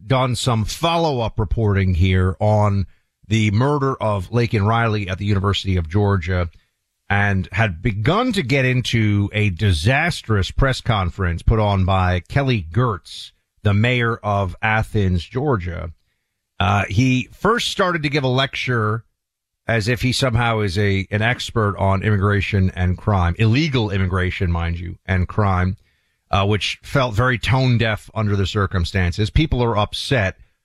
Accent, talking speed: American, 145 wpm